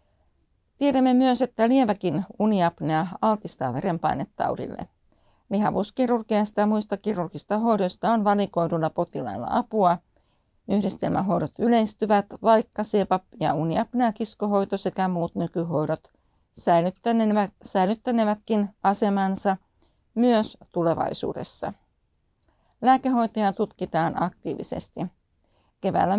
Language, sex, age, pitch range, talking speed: Finnish, female, 60-79, 180-225 Hz, 75 wpm